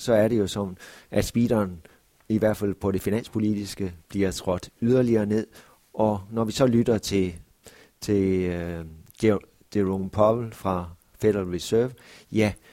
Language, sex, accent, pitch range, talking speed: Danish, male, native, 95-110 Hz, 145 wpm